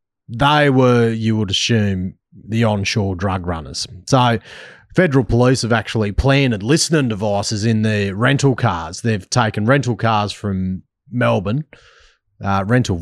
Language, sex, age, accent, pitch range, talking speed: English, male, 30-49, Australian, 100-125 Hz, 135 wpm